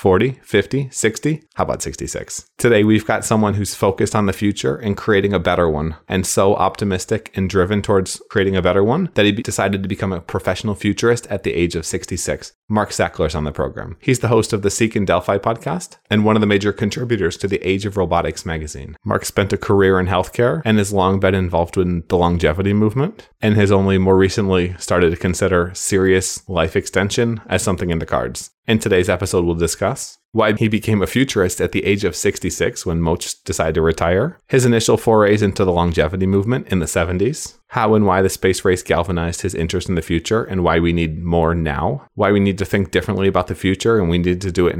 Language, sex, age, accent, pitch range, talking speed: English, male, 30-49, American, 85-105 Hz, 220 wpm